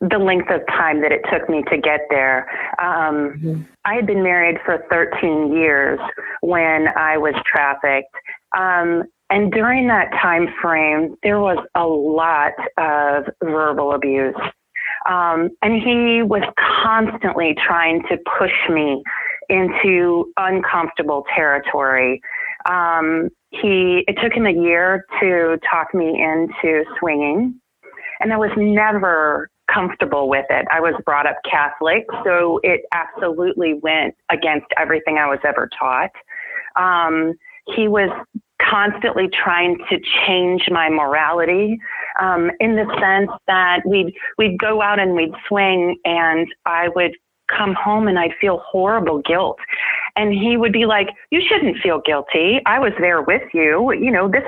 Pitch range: 160-210 Hz